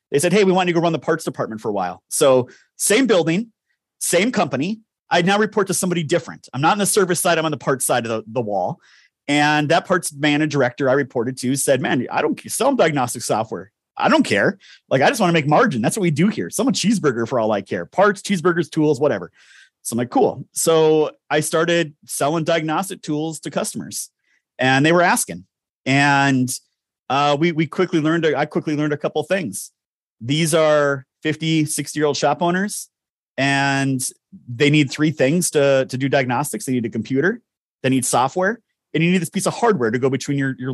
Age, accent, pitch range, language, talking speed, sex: 30-49, American, 140-175 Hz, English, 210 wpm, male